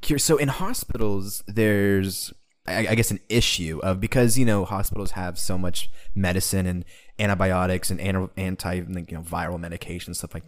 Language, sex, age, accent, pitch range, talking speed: English, male, 20-39, American, 90-105 Hz, 170 wpm